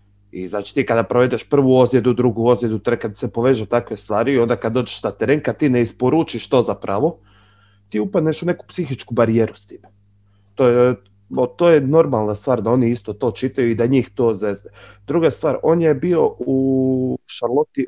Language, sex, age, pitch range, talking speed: Croatian, male, 30-49, 115-165 Hz, 190 wpm